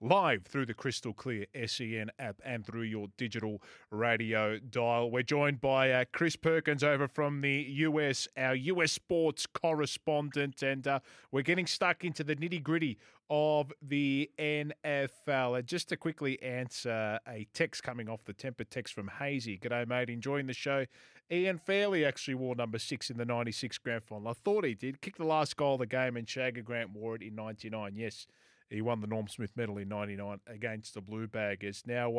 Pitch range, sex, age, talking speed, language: 120-150 Hz, male, 20-39, 190 wpm, English